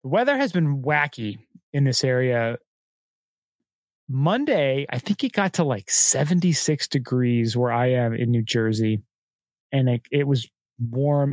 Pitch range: 125-155 Hz